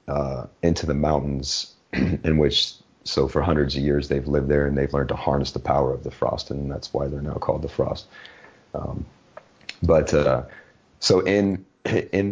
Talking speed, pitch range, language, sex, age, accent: 185 wpm, 70-75 Hz, English, male, 30-49, American